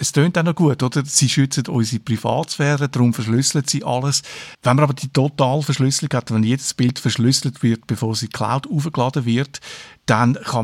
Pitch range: 120-145 Hz